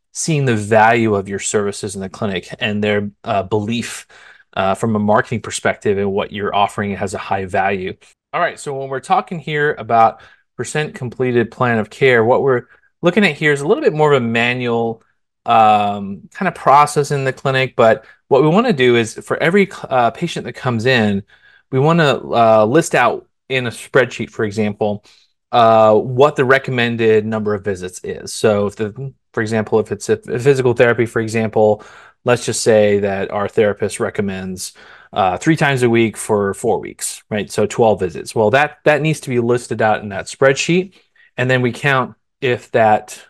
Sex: male